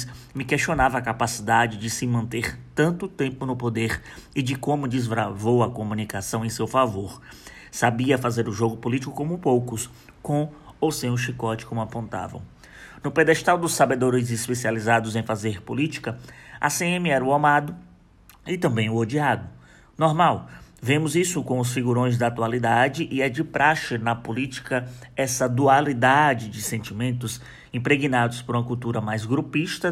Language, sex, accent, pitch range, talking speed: Portuguese, male, Brazilian, 115-135 Hz, 150 wpm